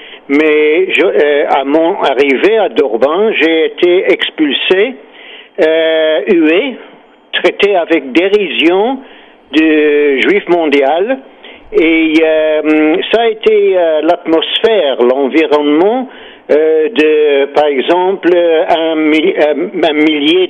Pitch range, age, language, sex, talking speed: 150-220 Hz, 60-79, French, male, 100 wpm